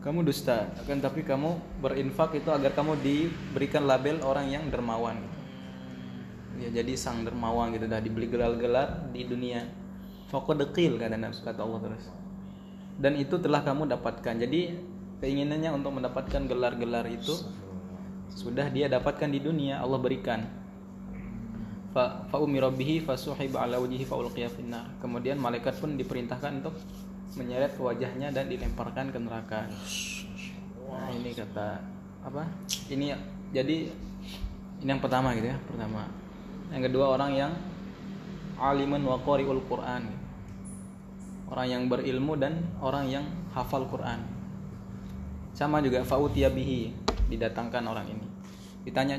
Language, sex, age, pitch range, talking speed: Indonesian, male, 20-39, 115-155 Hz, 115 wpm